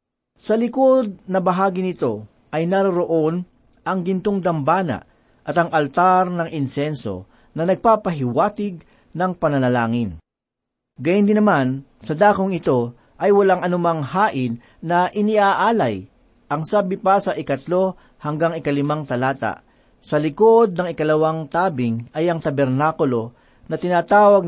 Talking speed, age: 120 wpm, 40-59